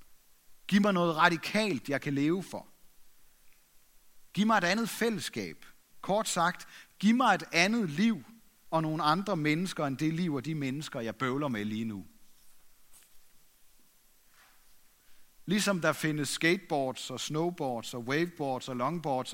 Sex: male